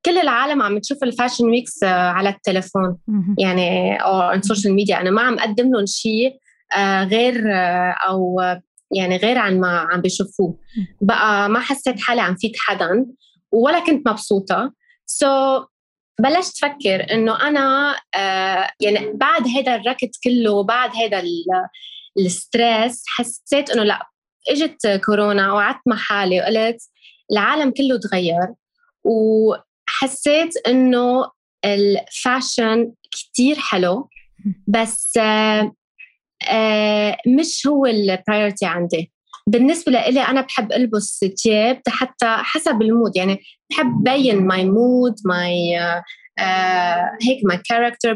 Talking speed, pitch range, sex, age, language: 115 wpm, 195-260 Hz, female, 20-39, Arabic